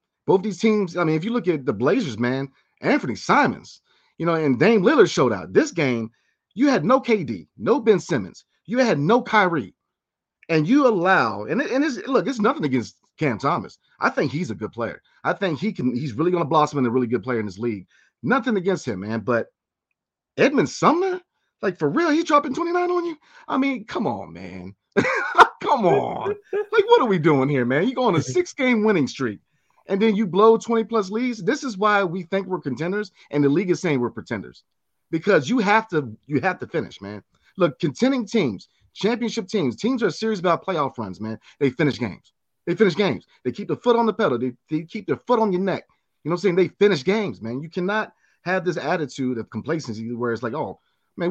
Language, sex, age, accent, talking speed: English, male, 30-49, American, 220 wpm